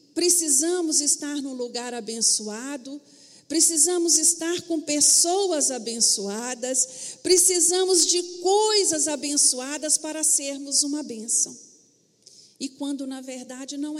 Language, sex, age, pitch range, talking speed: Portuguese, female, 50-69, 250-335 Hz, 100 wpm